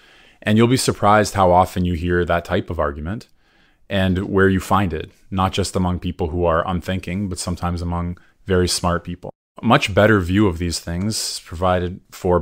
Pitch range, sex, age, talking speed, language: 90-100 Hz, male, 20-39, 190 wpm, English